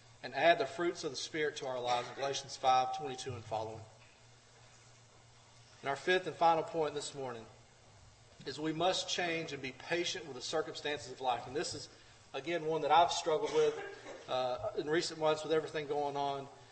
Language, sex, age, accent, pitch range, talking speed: English, male, 40-59, American, 130-165 Hz, 190 wpm